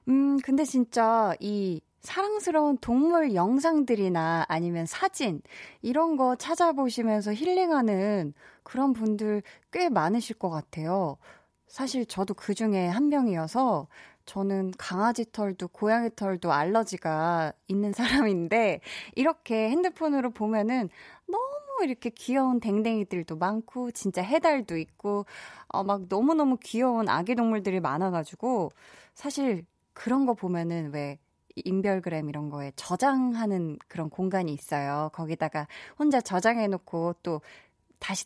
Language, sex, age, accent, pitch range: Korean, female, 20-39, native, 170-255 Hz